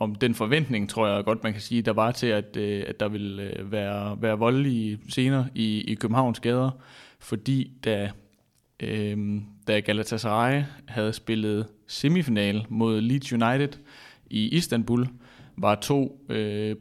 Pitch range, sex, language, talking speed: 105-130 Hz, male, Danish, 145 wpm